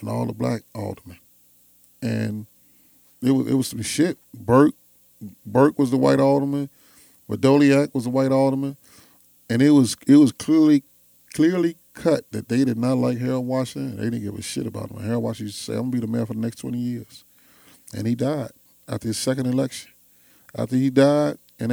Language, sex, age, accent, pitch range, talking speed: English, male, 30-49, American, 105-135 Hz, 190 wpm